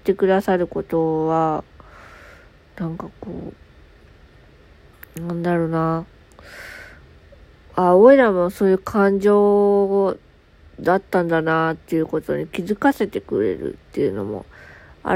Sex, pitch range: female, 165-225 Hz